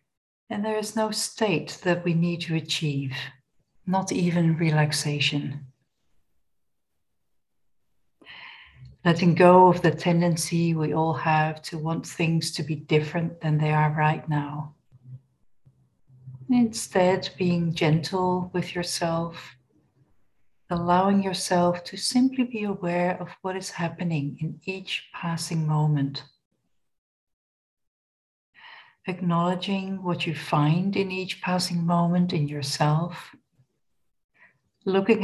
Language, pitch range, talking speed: English, 150-180 Hz, 105 wpm